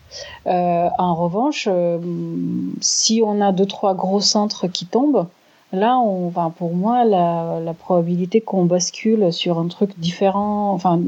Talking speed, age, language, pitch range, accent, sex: 150 wpm, 30-49, French, 175-210 Hz, French, female